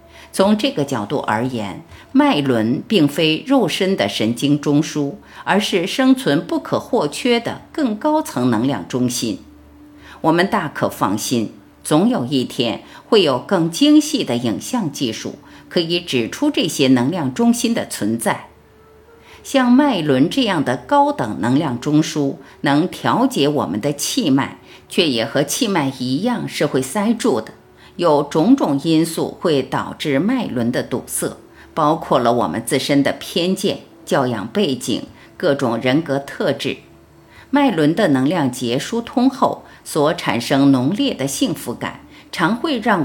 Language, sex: Chinese, female